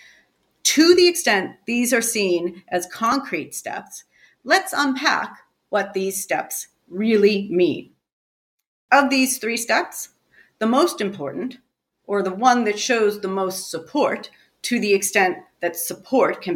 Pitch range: 180-245 Hz